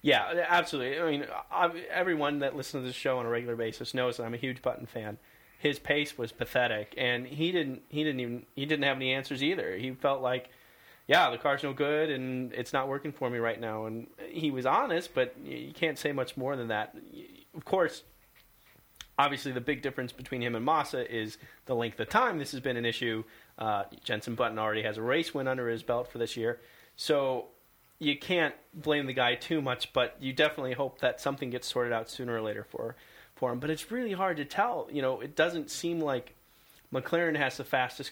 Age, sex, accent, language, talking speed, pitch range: 30-49, male, American, English, 215 wpm, 120-145 Hz